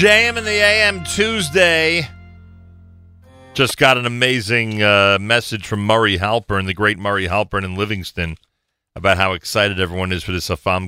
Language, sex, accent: English, male, American